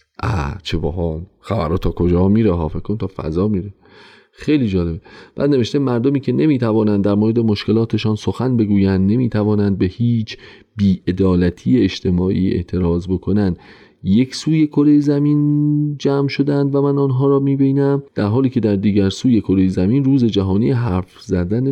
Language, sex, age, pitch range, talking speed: Persian, male, 40-59, 95-140 Hz, 145 wpm